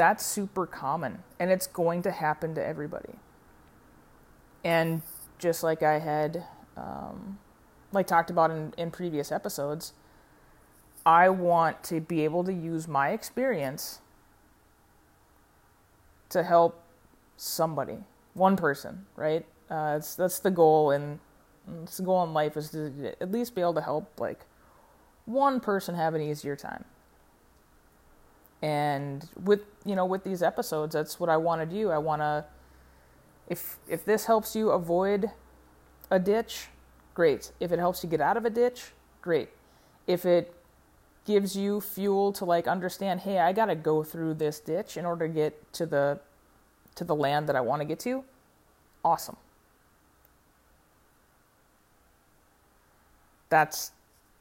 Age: 20-39